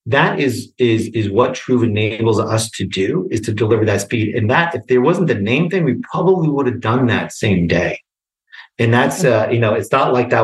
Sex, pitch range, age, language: male, 105-125 Hz, 40-59, English